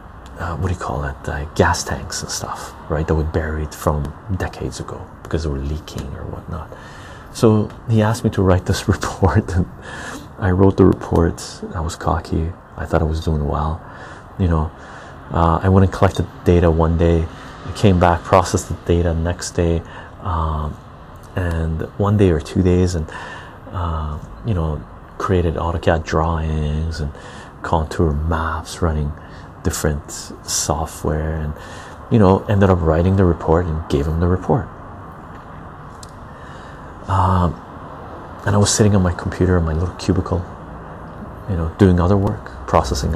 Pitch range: 80-95 Hz